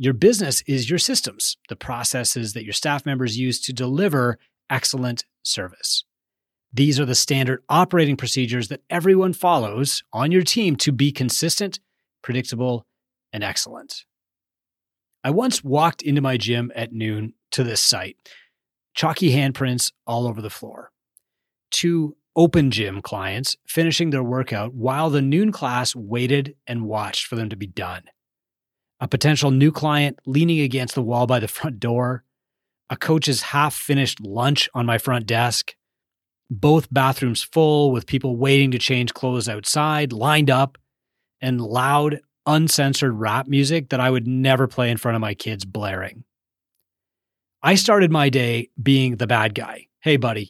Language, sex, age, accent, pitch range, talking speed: English, male, 30-49, American, 120-145 Hz, 155 wpm